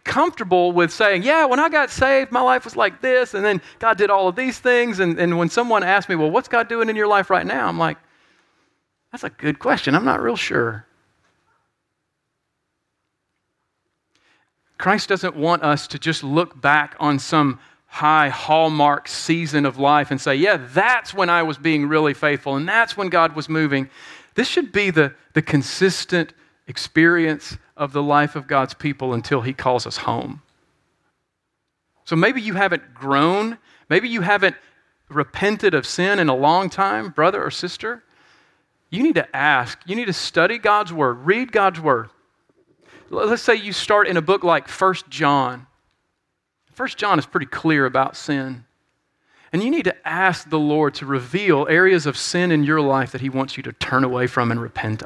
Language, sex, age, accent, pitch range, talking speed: English, male, 40-59, American, 145-205 Hz, 185 wpm